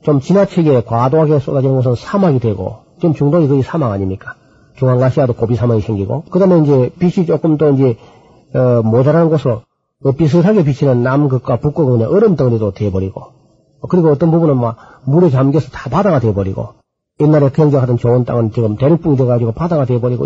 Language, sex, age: Korean, male, 40-59